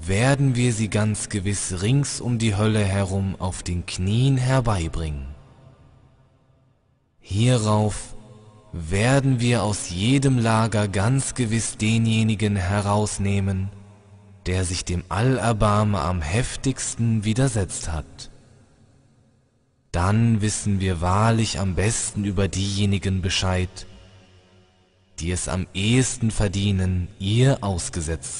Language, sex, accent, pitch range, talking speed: German, male, German, 95-115 Hz, 100 wpm